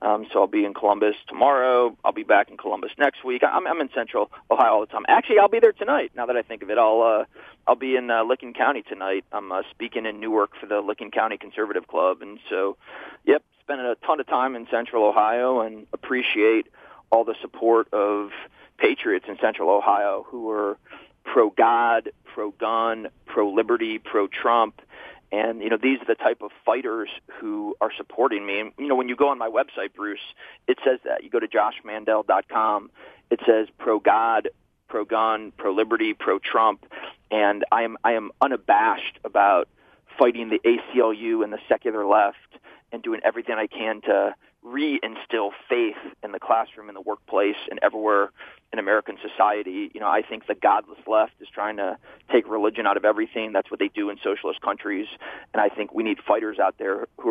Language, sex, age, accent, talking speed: English, male, 40-59, American, 190 wpm